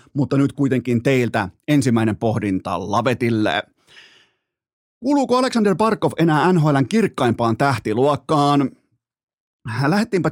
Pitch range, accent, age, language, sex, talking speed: 125-150 Hz, native, 30-49, Finnish, male, 85 wpm